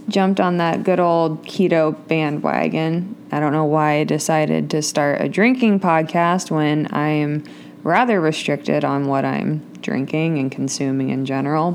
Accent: American